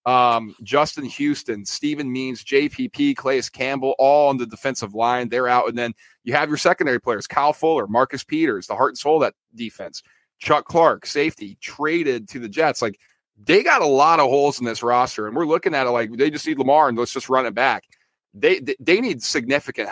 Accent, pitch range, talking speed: American, 120-155 Hz, 215 wpm